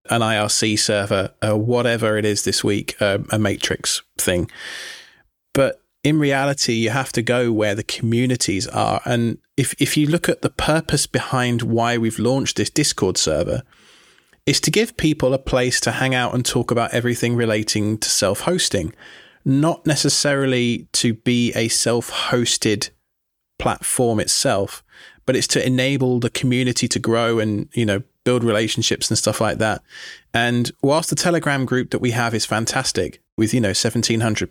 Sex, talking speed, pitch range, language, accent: male, 165 wpm, 110-135 Hz, English, British